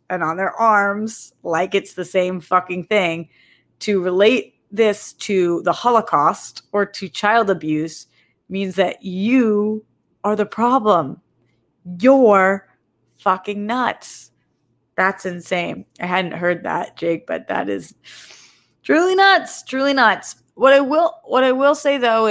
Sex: female